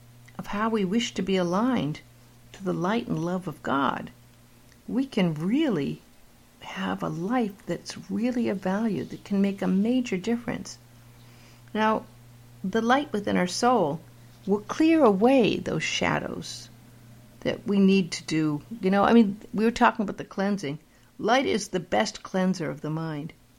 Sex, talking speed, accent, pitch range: female, 165 wpm, American, 150-210 Hz